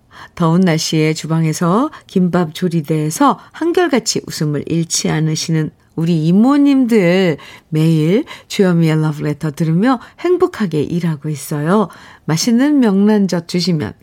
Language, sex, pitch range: Korean, female, 160-230 Hz